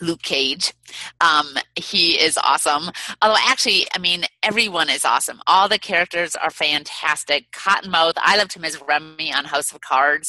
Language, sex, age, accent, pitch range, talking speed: English, female, 30-49, American, 150-185 Hz, 165 wpm